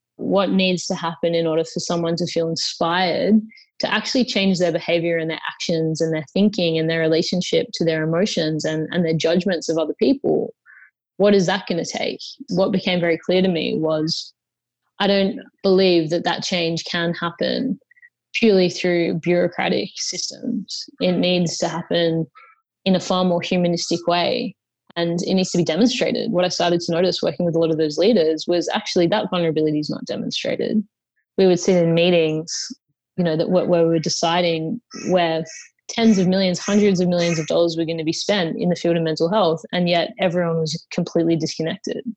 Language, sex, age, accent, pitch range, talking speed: English, female, 20-39, Australian, 165-200 Hz, 190 wpm